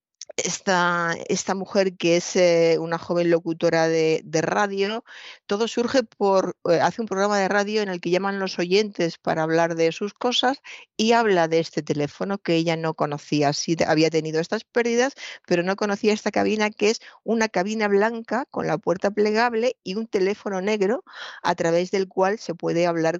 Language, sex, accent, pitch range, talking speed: Spanish, female, Spanish, 165-205 Hz, 185 wpm